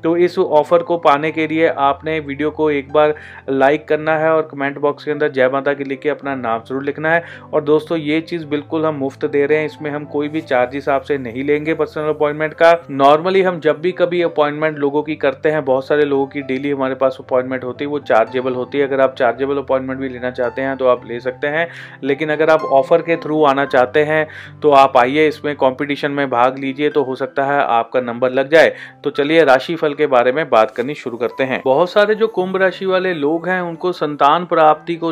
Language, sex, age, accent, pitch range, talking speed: Hindi, male, 30-49, native, 135-155 Hz, 230 wpm